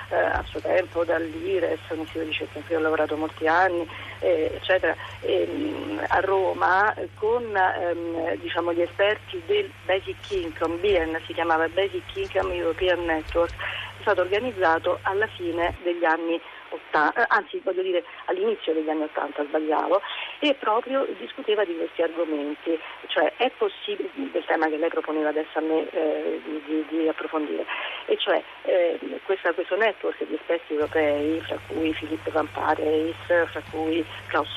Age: 40-59